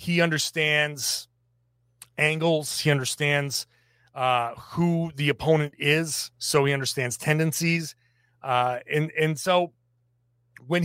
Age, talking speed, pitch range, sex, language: 30-49, 105 wpm, 125-175 Hz, male, English